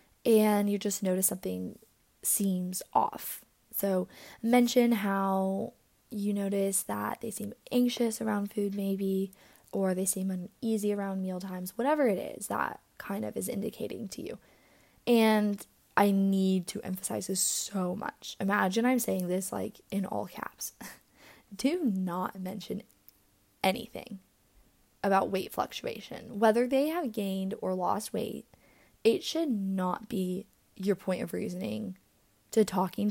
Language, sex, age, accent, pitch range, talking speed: English, female, 10-29, American, 190-225 Hz, 135 wpm